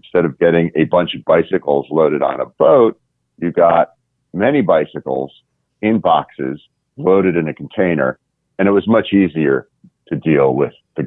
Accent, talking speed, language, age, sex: American, 165 wpm, English, 40-59, male